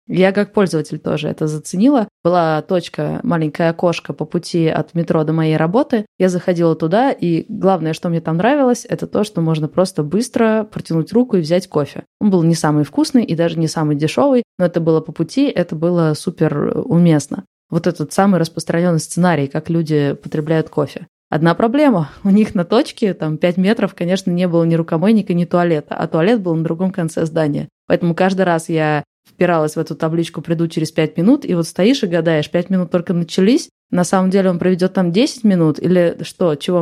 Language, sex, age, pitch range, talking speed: Russian, female, 20-39, 160-190 Hz, 195 wpm